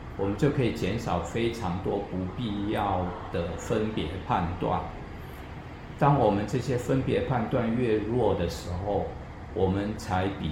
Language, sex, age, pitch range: Chinese, male, 50-69, 85-110 Hz